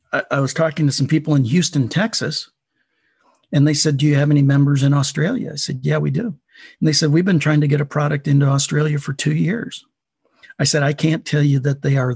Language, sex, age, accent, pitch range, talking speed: English, male, 50-69, American, 130-155 Hz, 235 wpm